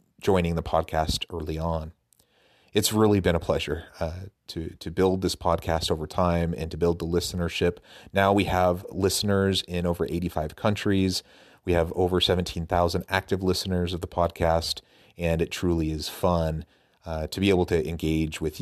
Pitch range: 80-95 Hz